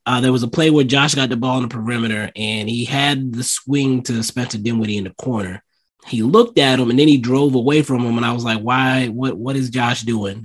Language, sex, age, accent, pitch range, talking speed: English, male, 20-39, American, 110-135 Hz, 260 wpm